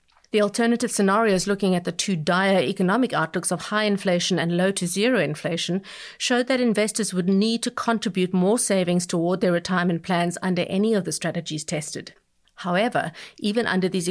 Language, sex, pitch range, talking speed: English, female, 175-210 Hz, 165 wpm